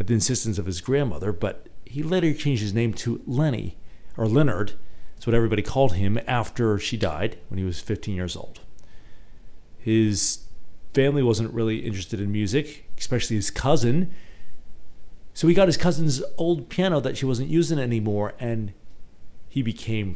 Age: 40-59